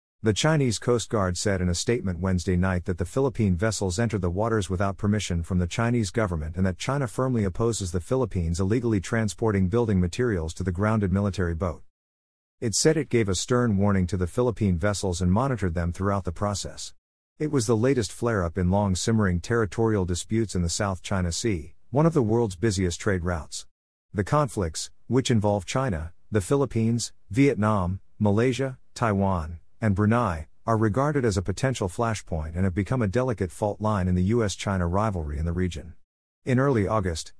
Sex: male